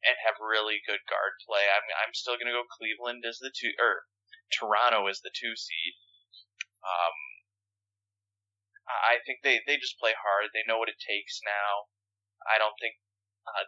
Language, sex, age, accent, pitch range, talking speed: English, male, 20-39, American, 100-115 Hz, 180 wpm